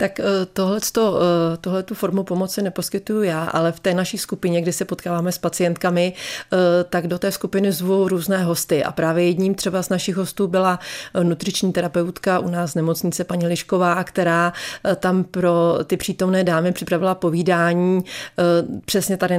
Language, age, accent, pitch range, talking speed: Czech, 30-49, native, 165-185 Hz, 150 wpm